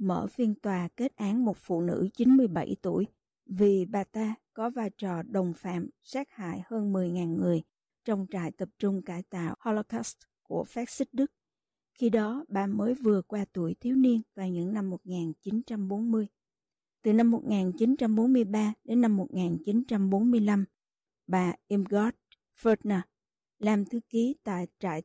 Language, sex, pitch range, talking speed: Vietnamese, female, 185-230 Hz, 145 wpm